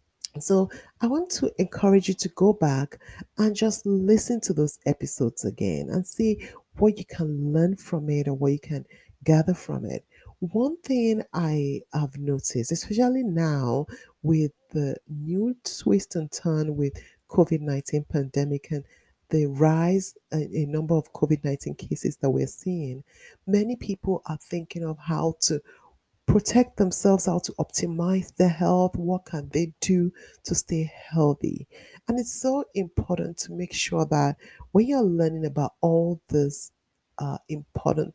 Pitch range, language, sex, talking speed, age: 150-195 Hz, English, female, 150 wpm, 30-49